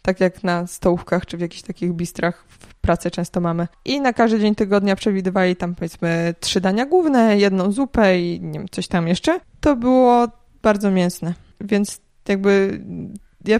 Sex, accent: female, native